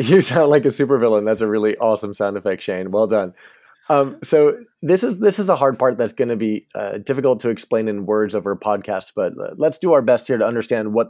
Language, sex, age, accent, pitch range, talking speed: English, male, 20-39, American, 105-135 Hz, 245 wpm